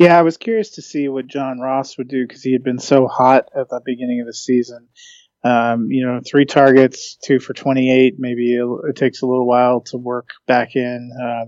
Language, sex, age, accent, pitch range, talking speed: English, male, 30-49, American, 120-135 Hz, 230 wpm